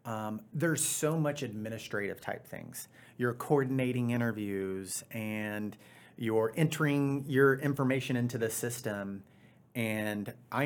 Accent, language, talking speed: American, English, 115 wpm